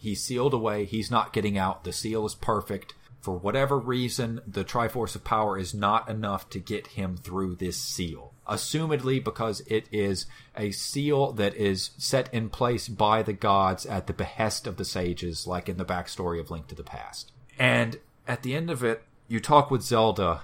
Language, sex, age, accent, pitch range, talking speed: English, male, 30-49, American, 90-115 Hz, 195 wpm